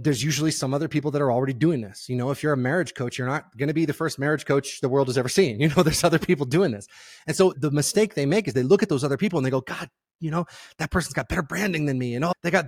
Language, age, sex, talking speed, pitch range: English, 30-49, male, 325 wpm, 125-160 Hz